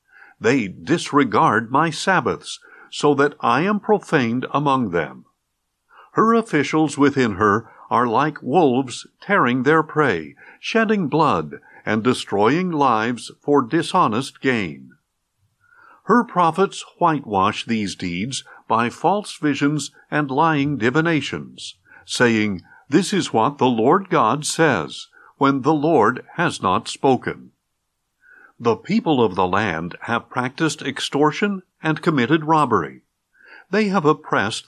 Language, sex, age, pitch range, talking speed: English, male, 60-79, 125-175 Hz, 120 wpm